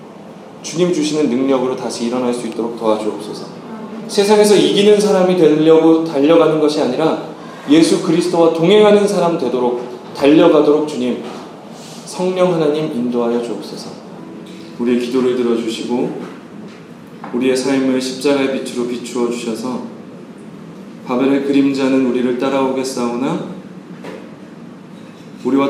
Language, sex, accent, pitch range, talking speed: English, male, Korean, 120-155 Hz, 95 wpm